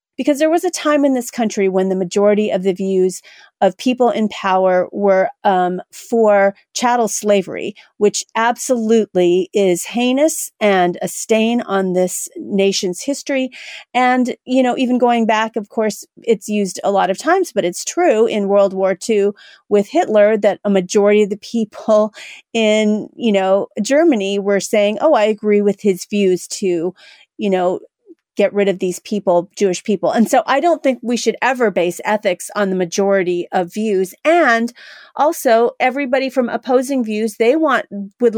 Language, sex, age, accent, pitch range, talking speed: English, female, 40-59, American, 190-235 Hz, 170 wpm